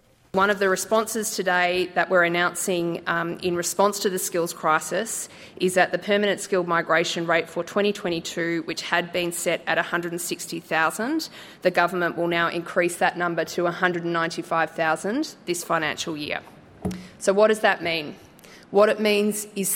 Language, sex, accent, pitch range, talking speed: English, female, Australian, 165-195 Hz, 155 wpm